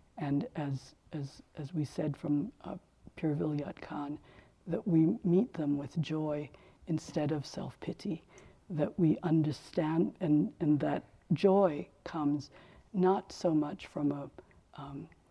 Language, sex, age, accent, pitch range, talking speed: English, female, 60-79, American, 145-175 Hz, 130 wpm